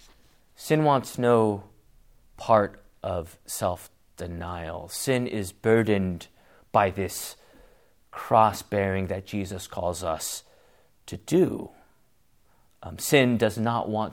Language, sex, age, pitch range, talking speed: English, male, 30-49, 95-145 Hz, 100 wpm